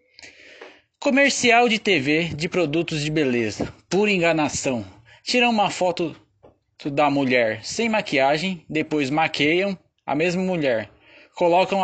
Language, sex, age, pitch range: Portuguese, male, 20-39, 150-195 Hz